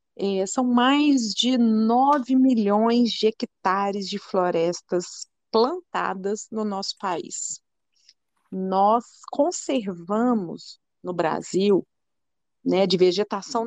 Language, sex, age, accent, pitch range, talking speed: Portuguese, female, 40-59, Brazilian, 195-255 Hz, 90 wpm